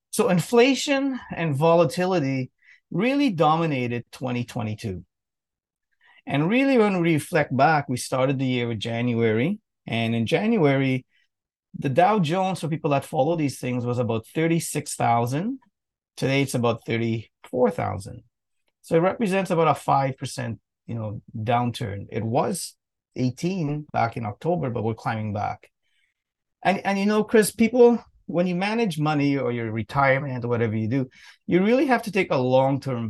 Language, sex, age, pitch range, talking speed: English, male, 30-49, 120-175 Hz, 145 wpm